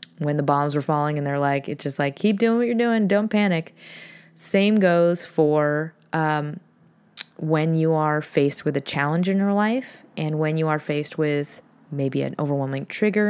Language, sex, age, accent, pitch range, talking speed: English, female, 20-39, American, 155-195 Hz, 190 wpm